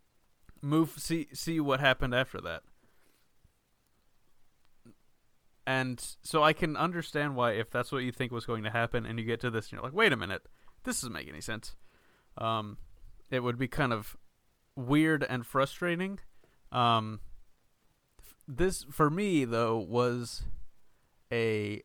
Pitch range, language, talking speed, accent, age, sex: 115-140 Hz, English, 150 wpm, American, 30-49, male